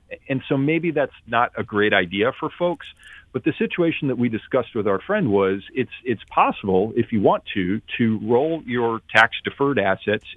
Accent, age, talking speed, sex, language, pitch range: American, 40-59, 185 wpm, male, English, 95-120 Hz